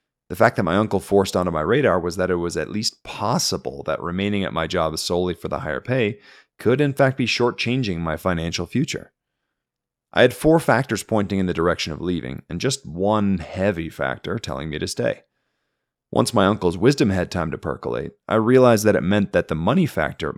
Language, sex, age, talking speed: English, male, 30-49, 205 wpm